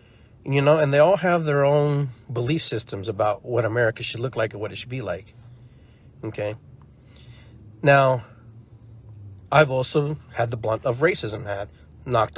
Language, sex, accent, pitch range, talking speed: English, male, American, 115-145 Hz, 160 wpm